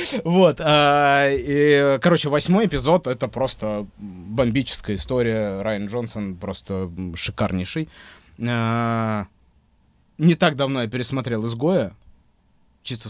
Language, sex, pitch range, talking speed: Russian, male, 100-145 Hz, 90 wpm